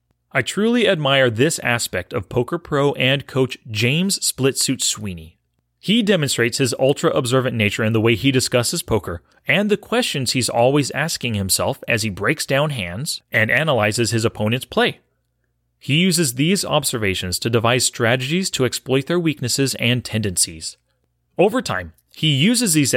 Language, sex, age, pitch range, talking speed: English, male, 30-49, 110-170 Hz, 155 wpm